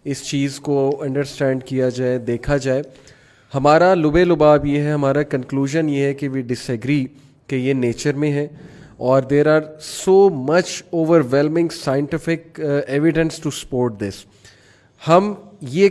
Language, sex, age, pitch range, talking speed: Urdu, male, 30-49, 140-180 Hz, 145 wpm